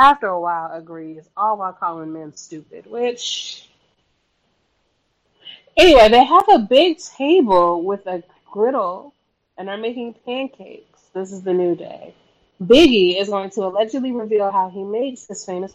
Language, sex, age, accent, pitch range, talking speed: English, female, 20-39, American, 180-220 Hz, 150 wpm